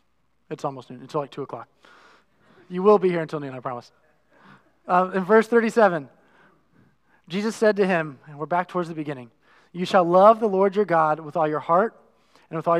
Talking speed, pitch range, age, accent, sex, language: 200 wpm, 155-200 Hz, 20-39, American, male, English